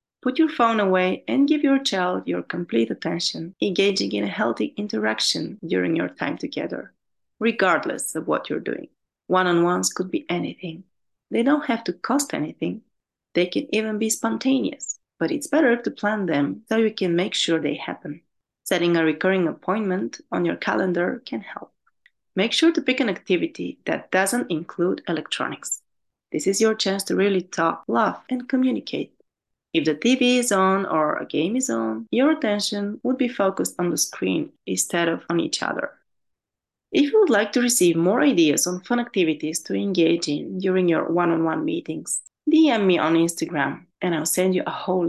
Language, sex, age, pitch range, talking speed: English, female, 30-49, 170-240 Hz, 175 wpm